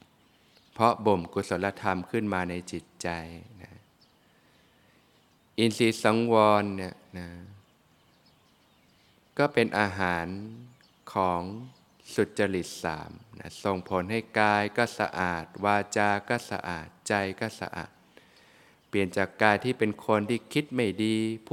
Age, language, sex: 20-39, Thai, male